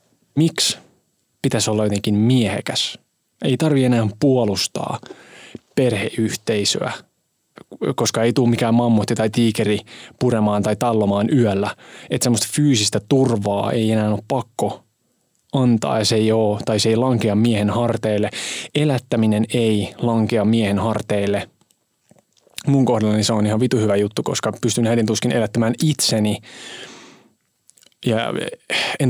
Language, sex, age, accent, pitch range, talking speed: Finnish, male, 20-39, native, 105-125 Hz, 120 wpm